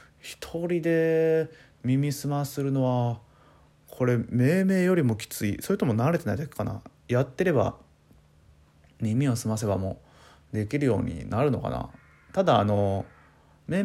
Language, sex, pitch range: Japanese, male, 105-130 Hz